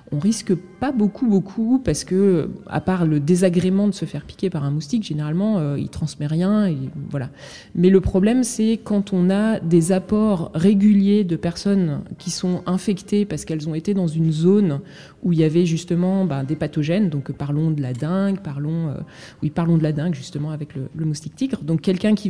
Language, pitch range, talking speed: French, 155-200 Hz, 205 wpm